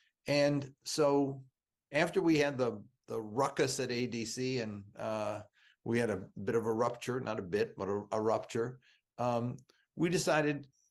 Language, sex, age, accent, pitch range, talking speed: English, male, 50-69, American, 115-145 Hz, 160 wpm